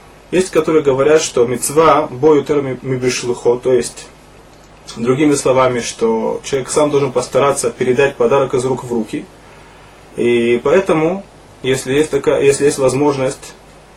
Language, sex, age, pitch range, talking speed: Russian, male, 20-39, 125-155 Hz, 135 wpm